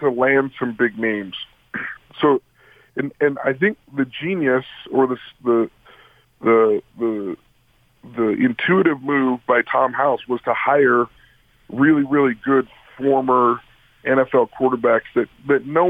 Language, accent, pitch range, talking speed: English, American, 120-140 Hz, 130 wpm